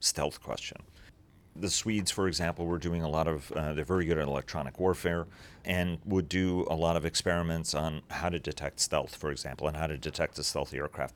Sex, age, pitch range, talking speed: male, 40-59, 75-95 Hz, 210 wpm